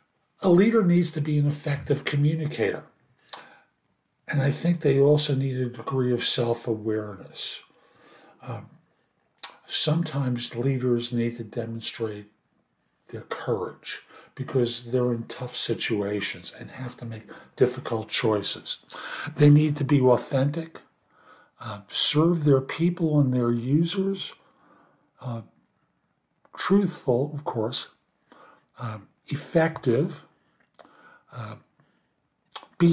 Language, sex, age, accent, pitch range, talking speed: English, male, 60-79, American, 120-150 Hz, 100 wpm